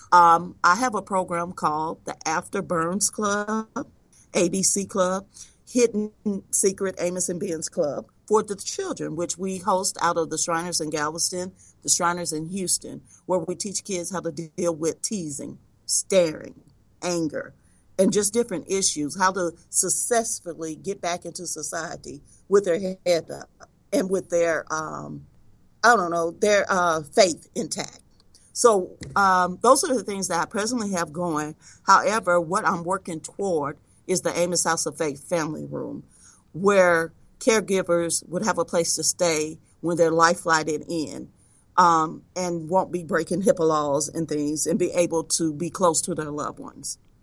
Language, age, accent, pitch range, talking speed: English, 40-59, American, 160-190 Hz, 160 wpm